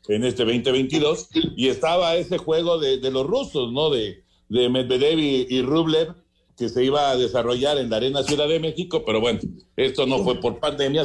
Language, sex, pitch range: Spanish, male, 120-165 Hz